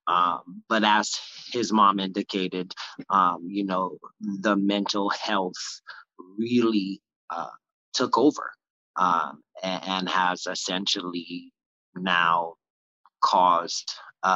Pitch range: 90-105 Hz